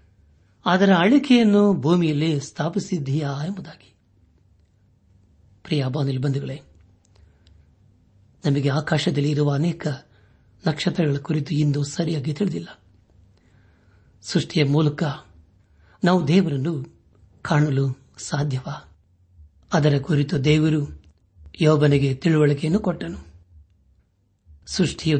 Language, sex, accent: Kannada, male, native